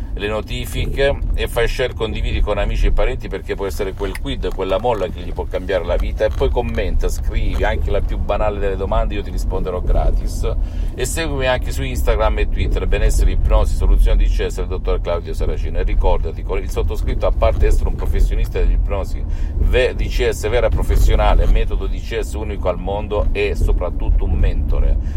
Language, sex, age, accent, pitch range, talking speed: Italian, male, 50-69, native, 75-95 Hz, 190 wpm